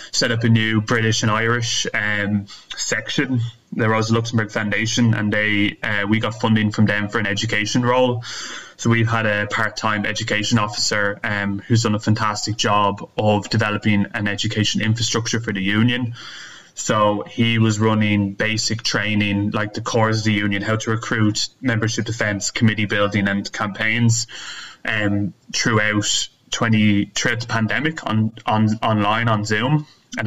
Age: 20-39